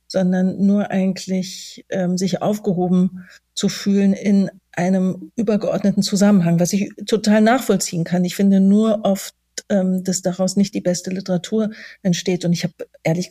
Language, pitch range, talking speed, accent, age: German, 180-200 Hz, 150 wpm, German, 40-59